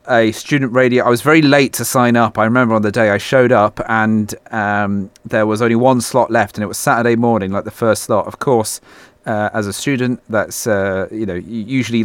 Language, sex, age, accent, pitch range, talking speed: English, male, 30-49, British, 105-125 Hz, 235 wpm